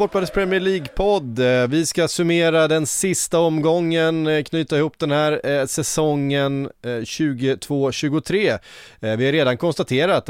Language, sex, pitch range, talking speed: English, male, 115-150 Hz, 110 wpm